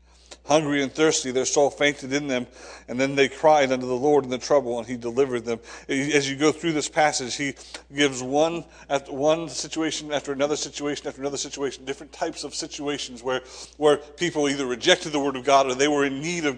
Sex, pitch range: male, 135-190 Hz